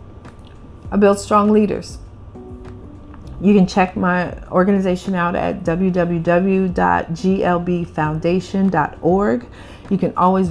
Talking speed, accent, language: 85 wpm, American, English